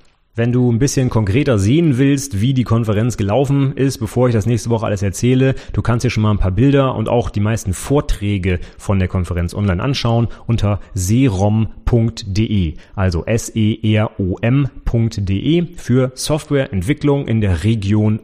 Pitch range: 95-115 Hz